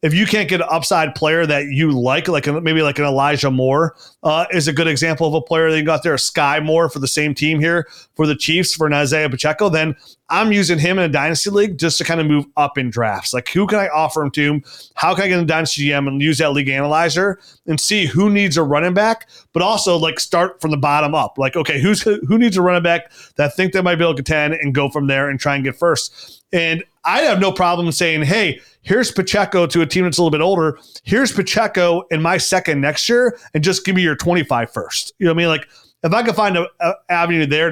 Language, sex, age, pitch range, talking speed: English, male, 30-49, 145-175 Hz, 260 wpm